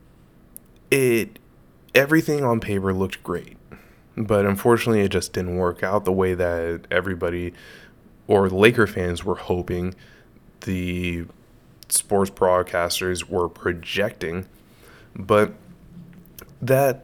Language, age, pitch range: English, 20-39, 90-115 Hz